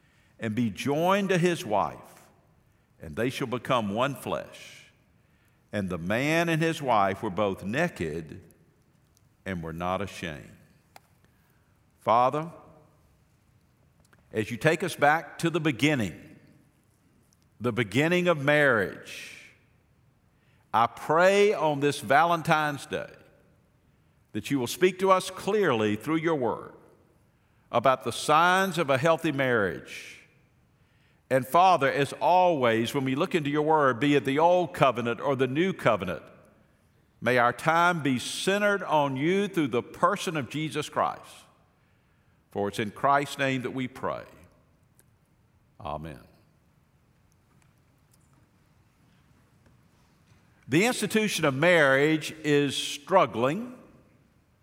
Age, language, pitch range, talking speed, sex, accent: 50-69, English, 125-175 Hz, 120 wpm, male, American